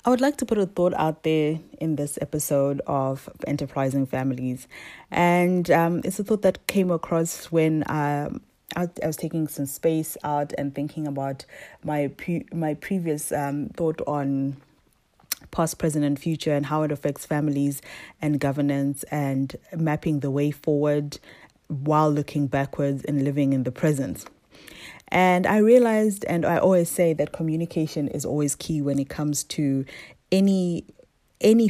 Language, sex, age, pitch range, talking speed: English, female, 20-39, 145-170 Hz, 160 wpm